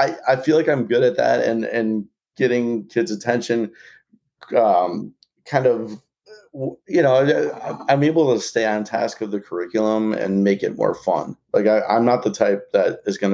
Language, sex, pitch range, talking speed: English, male, 100-130 Hz, 180 wpm